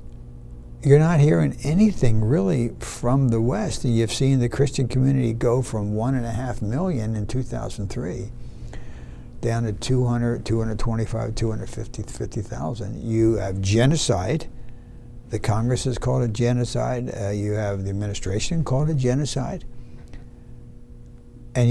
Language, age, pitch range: English, 60-79, 105-125 Hz